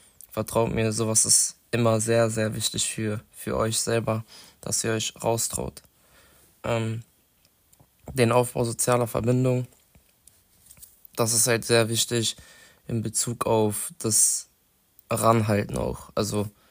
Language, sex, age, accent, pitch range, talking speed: German, male, 20-39, German, 110-115 Hz, 120 wpm